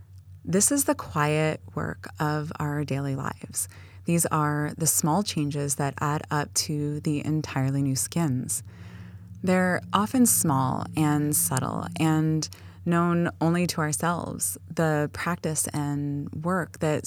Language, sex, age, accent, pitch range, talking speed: English, female, 20-39, American, 130-165 Hz, 130 wpm